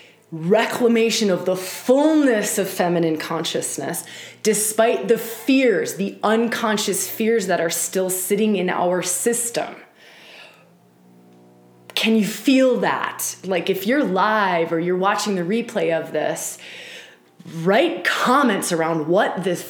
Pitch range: 175-230 Hz